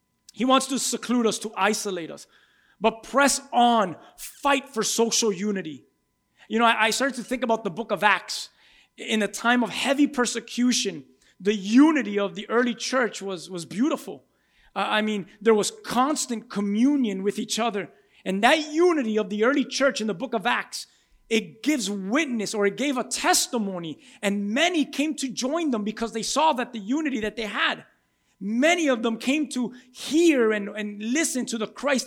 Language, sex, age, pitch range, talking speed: English, male, 30-49, 215-275 Hz, 185 wpm